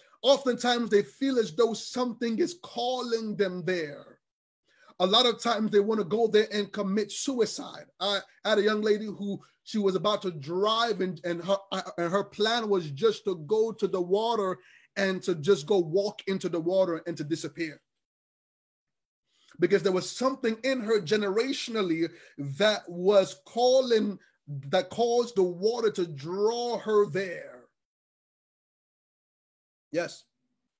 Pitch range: 185-230 Hz